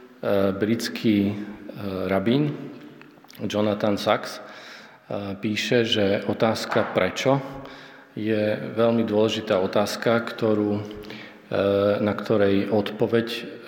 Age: 40-59